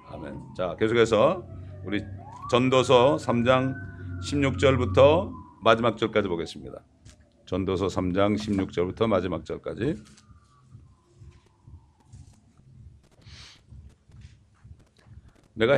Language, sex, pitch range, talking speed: English, male, 95-110 Hz, 55 wpm